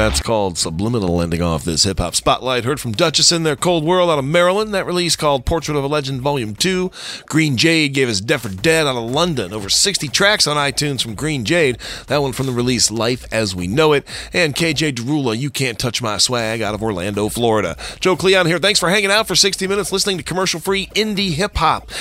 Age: 40-59